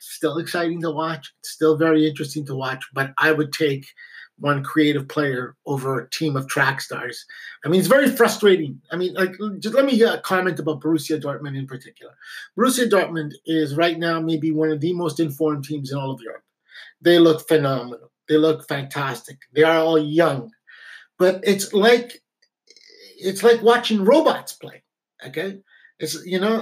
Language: English